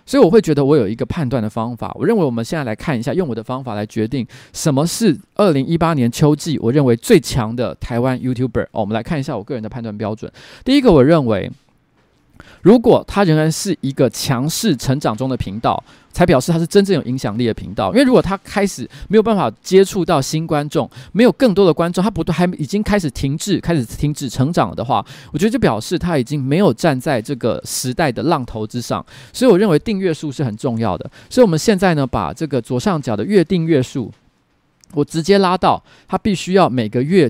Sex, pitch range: male, 120-175 Hz